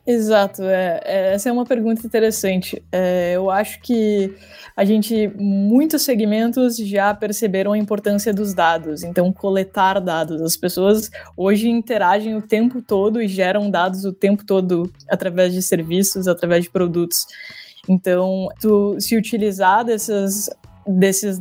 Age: 20-39